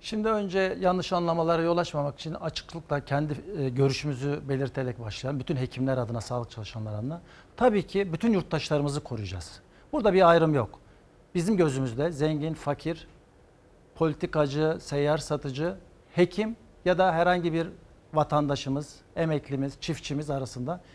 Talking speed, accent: 125 wpm, native